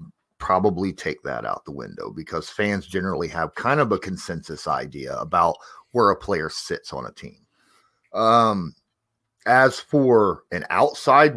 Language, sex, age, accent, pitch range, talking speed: English, male, 30-49, American, 95-145 Hz, 150 wpm